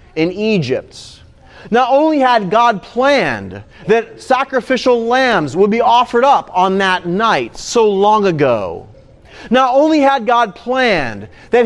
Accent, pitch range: American, 160-240 Hz